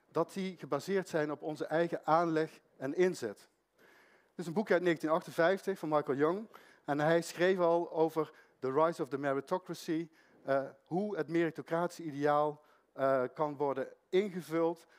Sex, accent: male, Dutch